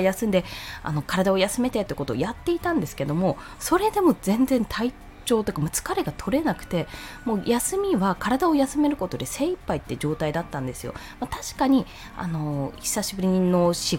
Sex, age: female, 20-39